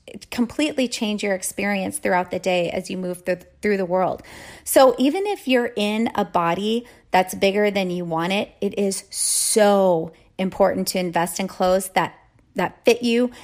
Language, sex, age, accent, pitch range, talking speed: English, female, 30-49, American, 190-240 Hz, 175 wpm